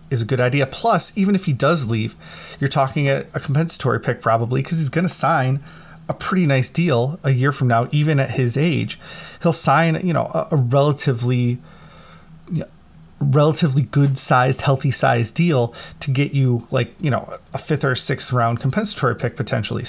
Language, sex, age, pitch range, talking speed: English, male, 30-49, 125-150 Hz, 195 wpm